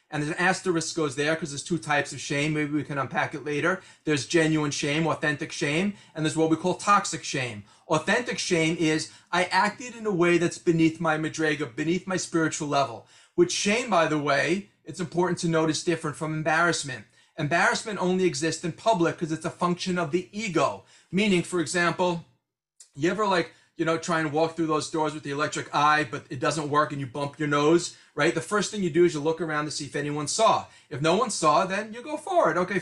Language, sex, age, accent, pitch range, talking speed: English, male, 40-59, American, 150-180 Hz, 220 wpm